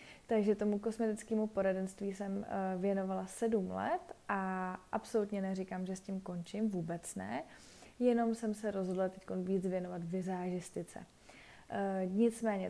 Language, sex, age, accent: Czech, female, 20-39, native